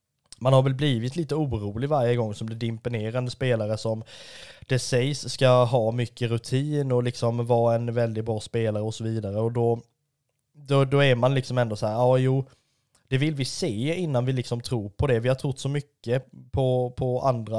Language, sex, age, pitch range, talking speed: Swedish, male, 20-39, 115-135 Hz, 200 wpm